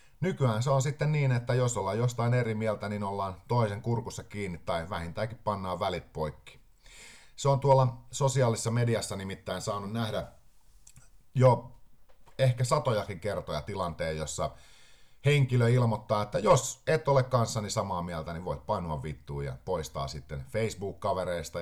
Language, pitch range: Finnish, 90-125 Hz